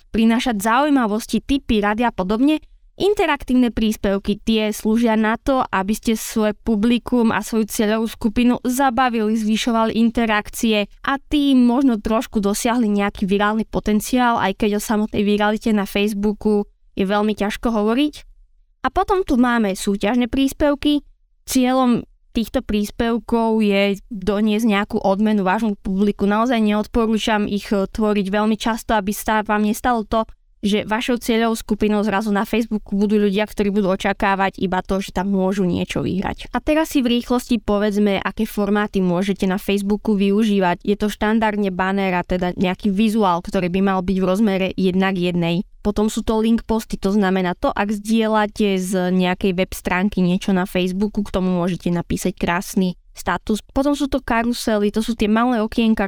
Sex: female